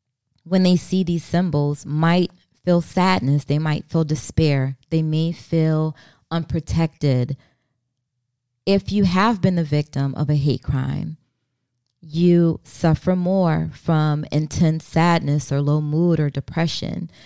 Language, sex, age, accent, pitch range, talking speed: English, female, 20-39, American, 140-165 Hz, 130 wpm